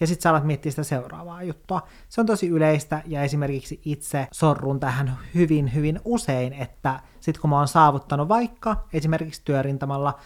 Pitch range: 135-160 Hz